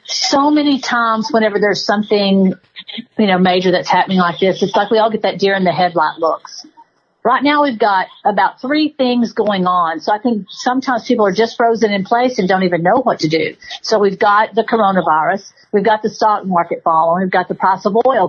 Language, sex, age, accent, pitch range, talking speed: English, female, 50-69, American, 185-245 Hz, 220 wpm